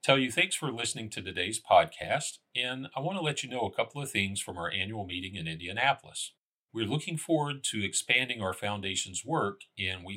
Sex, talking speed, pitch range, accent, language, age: male, 205 wpm, 90-115 Hz, American, English, 40-59